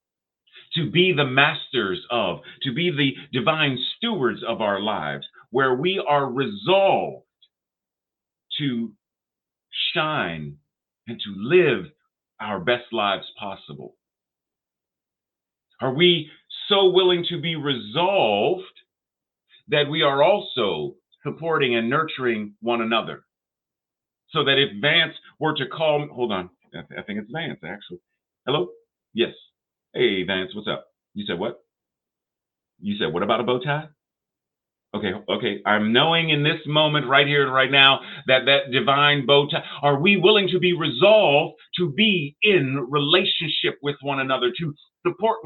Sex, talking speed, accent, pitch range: male, 140 wpm, American, 135-180 Hz